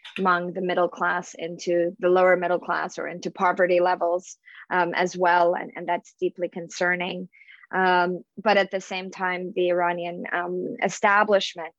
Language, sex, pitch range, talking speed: English, female, 175-200 Hz, 160 wpm